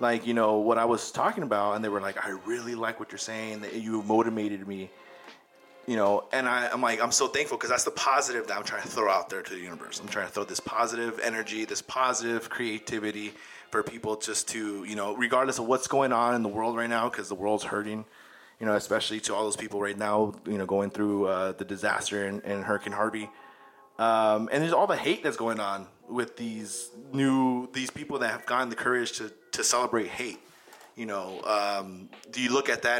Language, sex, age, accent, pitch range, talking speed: English, male, 30-49, American, 105-120 Hz, 225 wpm